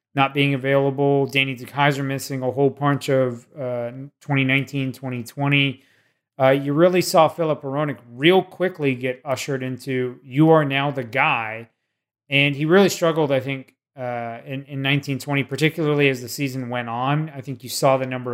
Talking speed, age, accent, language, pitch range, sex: 165 wpm, 30-49, American, English, 125-145 Hz, male